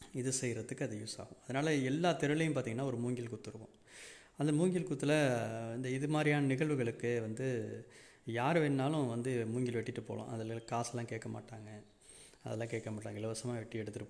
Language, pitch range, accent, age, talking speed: Tamil, 115-140 Hz, native, 30-49, 155 wpm